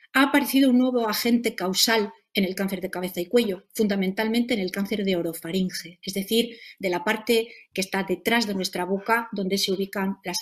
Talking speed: 195 wpm